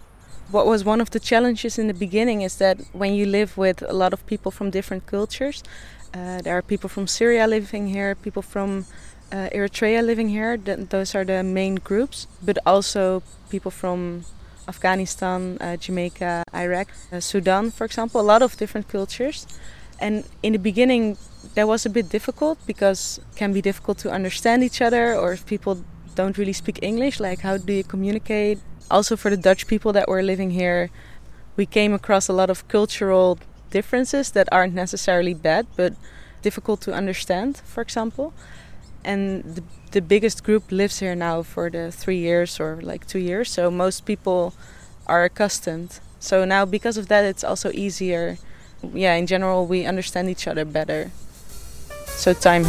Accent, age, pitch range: Dutch, 20-39, 180-215 Hz